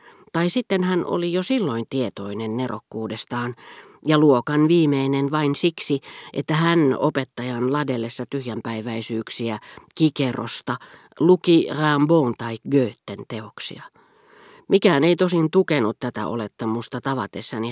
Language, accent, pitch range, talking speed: Finnish, native, 125-175 Hz, 105 wpm